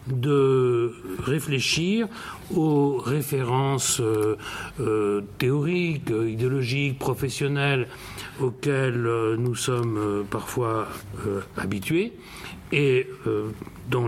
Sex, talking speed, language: male, 65 wpm, French